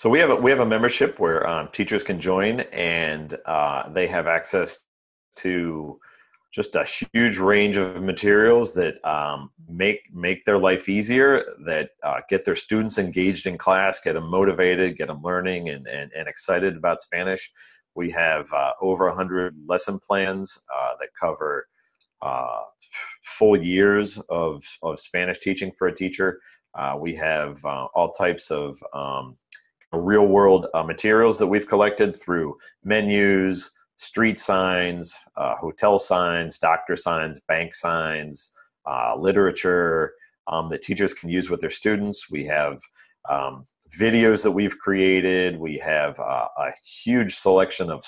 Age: 40-59